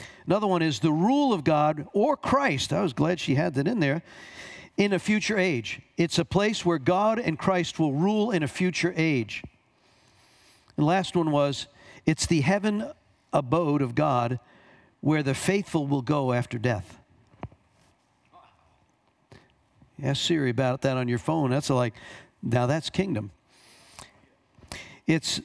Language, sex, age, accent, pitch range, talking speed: English, male, 50-69, American, 135-180 Hz, 155 wpm